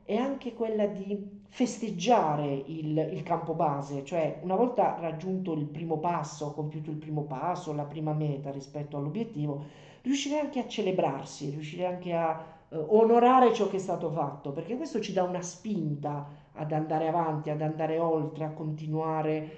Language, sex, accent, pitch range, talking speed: Italian, male, native, 155-195 Hz, 160 wpm